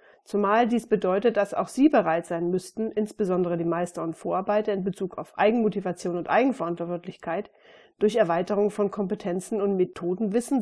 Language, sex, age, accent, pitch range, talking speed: German, female, 40-59, German, 195-245 Hz, 155 wpm